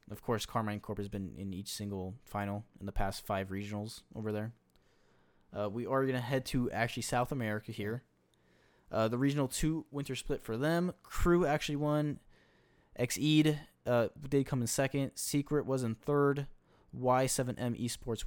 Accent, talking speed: American, 170 wpm